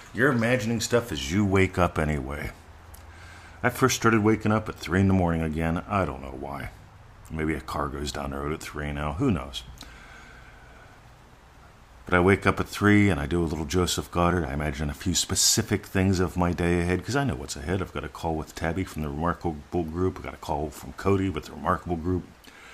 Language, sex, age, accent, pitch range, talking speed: English, male, 50-69, American, 75-100 Hz, 220 wpm